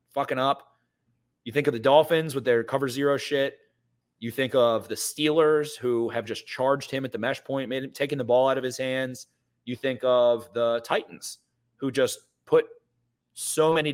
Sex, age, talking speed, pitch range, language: male, 30-49, 195 wpm, 115-150 Hz, English